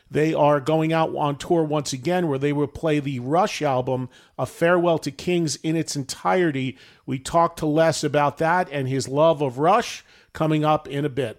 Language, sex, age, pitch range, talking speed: English, male, 40-59, 140-180 Hz, 200 wpm